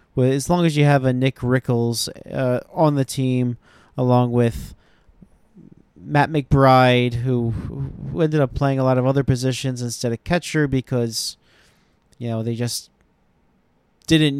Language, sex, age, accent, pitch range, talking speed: English, male, 40-59, American, 120-150 Hz, 145 wpm